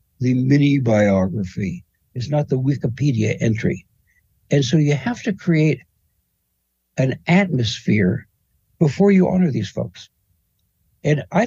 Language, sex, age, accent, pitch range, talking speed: English, male, 60-79, American, 110-170 Hz, 120 wpm